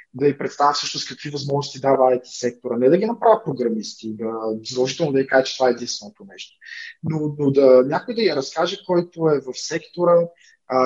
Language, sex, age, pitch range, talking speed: Bulgarian, male, 20-39, 130-160 Hz, 200 wpm